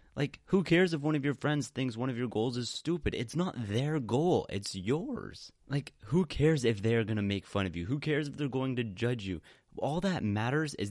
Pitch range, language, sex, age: 100-140 Hz, English, male, 30-49